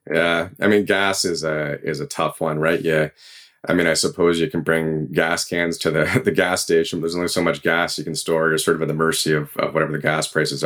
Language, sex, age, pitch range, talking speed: English, male, 30-49, 80-95 Hz, 265 wpm